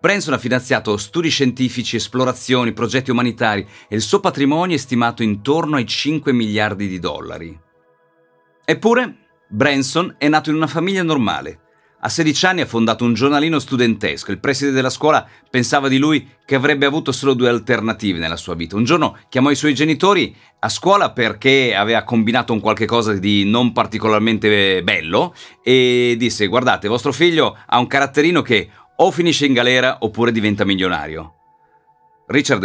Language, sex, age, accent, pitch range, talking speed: Italian, male, 40-59, native, 110-140 Hz, 160 wpm